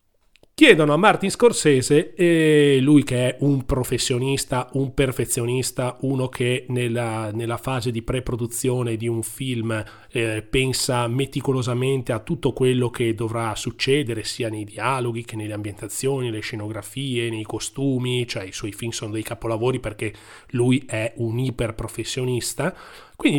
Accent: native